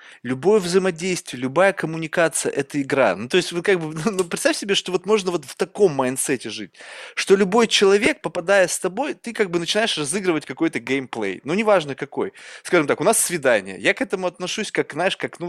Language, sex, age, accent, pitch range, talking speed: Russian, male, 20-39, native, 155-215 Hz, 200 wpm